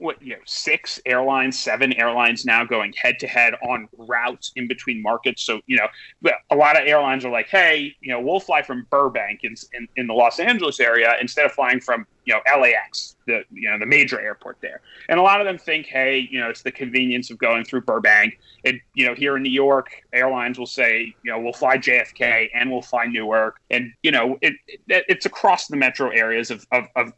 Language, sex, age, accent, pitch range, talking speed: English, male, 30-49, American, 120-185 Hz, 225 wpm